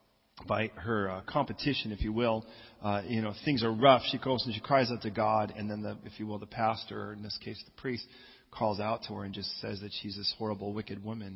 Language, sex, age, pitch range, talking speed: English, male, 40-59, 100-115 Hz, 255 wpm